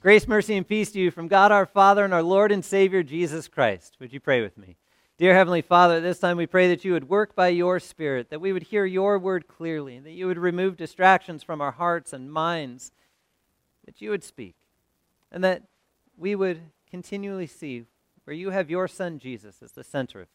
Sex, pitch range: male, 170-240 Hz